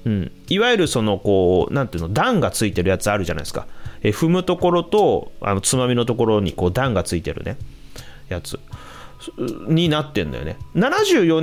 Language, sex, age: Japanese, male, 30-49